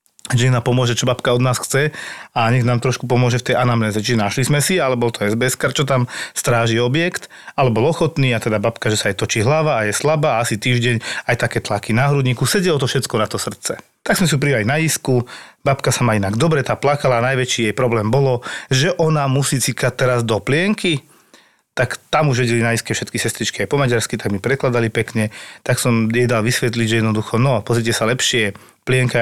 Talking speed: 220 wpm